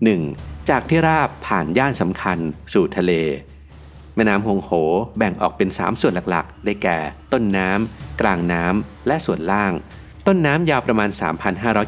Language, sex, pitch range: Thai, male, 85-110 Hz